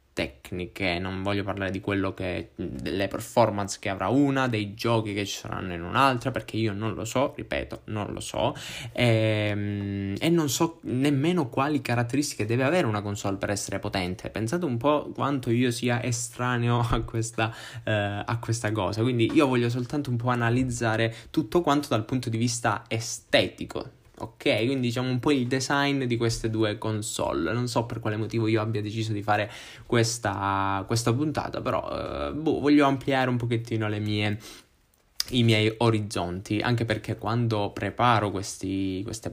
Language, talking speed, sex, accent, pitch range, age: Italian, 170 wpm, male, native, 100-120 Hz, 10-29